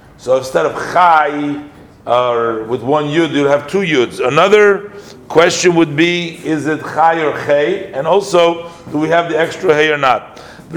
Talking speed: 180 wpm